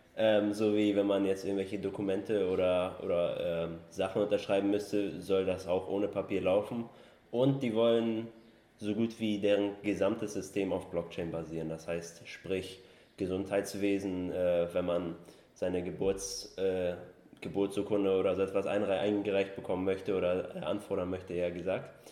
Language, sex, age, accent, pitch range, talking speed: German, male, 20-39, German, 90-105 Hz, 150 wpm